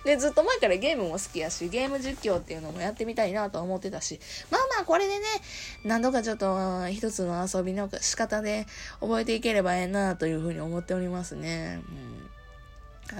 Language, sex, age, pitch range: Japanese, female, 20-39, 185-310 Hz